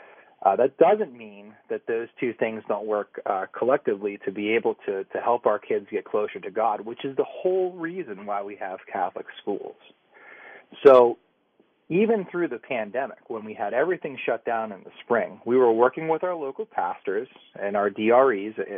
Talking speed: 185 wpm